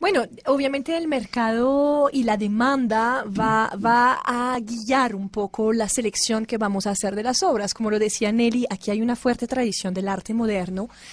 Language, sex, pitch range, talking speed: Spanish, female, 210-250 Hz, 185 wpm